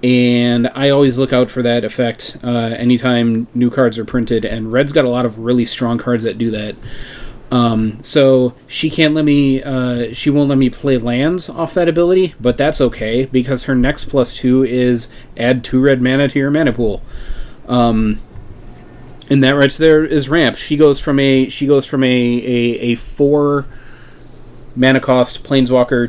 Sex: male